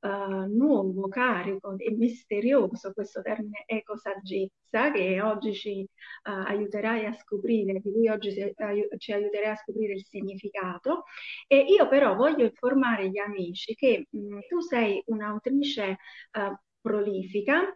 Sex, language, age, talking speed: female, Italian, 40-59, 130 wpm